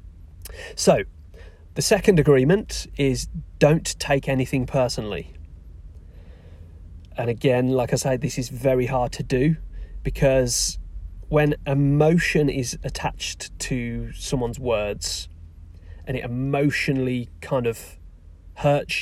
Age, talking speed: 30-49, 105 wpm